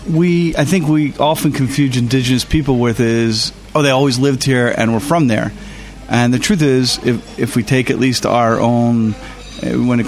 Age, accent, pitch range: 40-59, American, 115-140 Hz